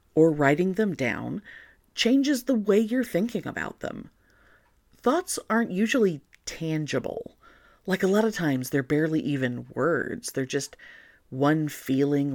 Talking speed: 135 wpm